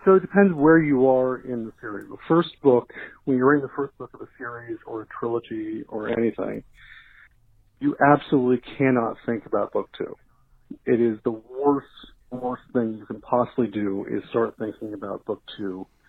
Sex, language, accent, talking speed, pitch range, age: male, English, American, 185 wpm, 115-135 Hz, 50-69